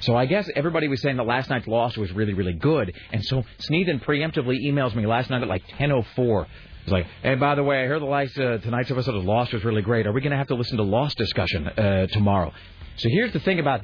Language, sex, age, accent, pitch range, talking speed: English, male, 40-59, American, 100-145 Hz, 260 wpm